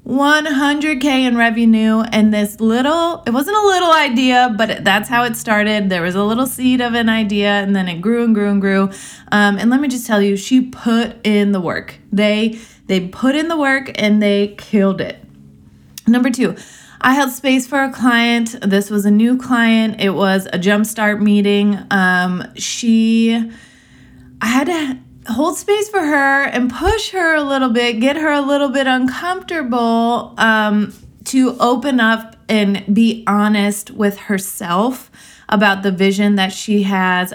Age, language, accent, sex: 20-39, English, American, female